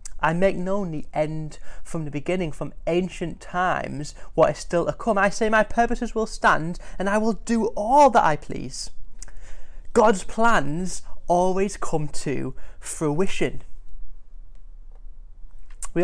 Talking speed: 140 wpm